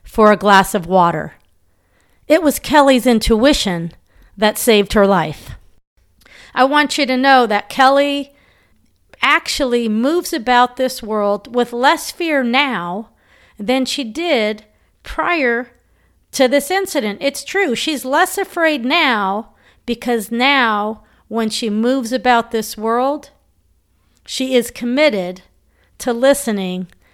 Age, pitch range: 40-59, 200-275 Hz